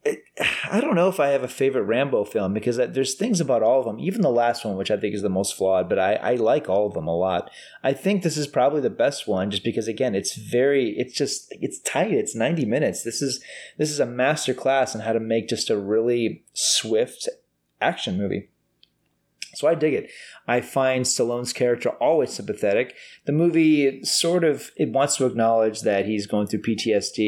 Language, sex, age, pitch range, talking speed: English, male, 30-49, 105-145 Hz, 215 wpm